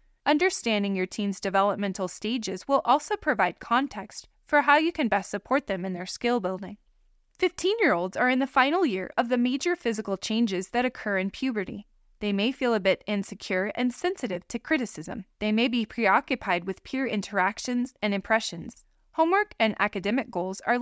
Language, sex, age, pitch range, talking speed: English, female, 20-39, 195-270 Hz, 170 wpm